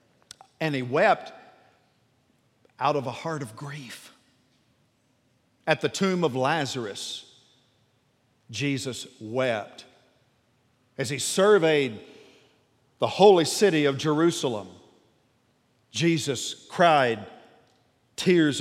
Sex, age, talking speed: male, 50-69, 85 wpm